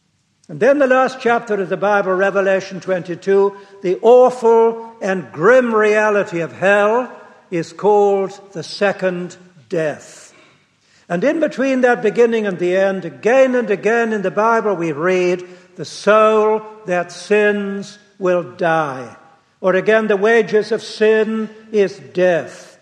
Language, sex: English, male